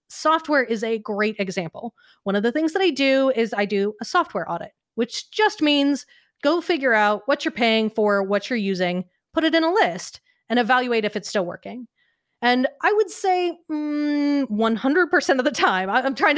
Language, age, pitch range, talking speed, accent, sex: English, 30-49, 210-285 Hz, 190 wpm, American, female